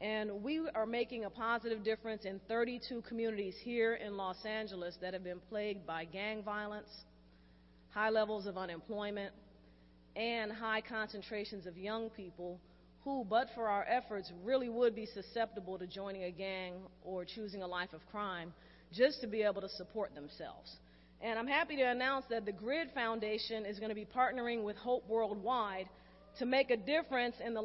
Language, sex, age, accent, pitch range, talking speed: English, female, 40-59, American, 195-240 Hz, 170 wpm